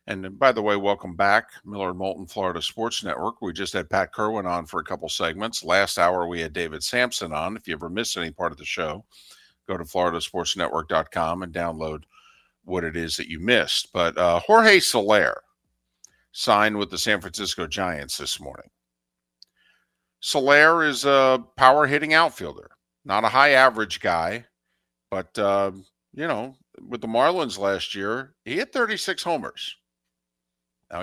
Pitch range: 85-130 Hz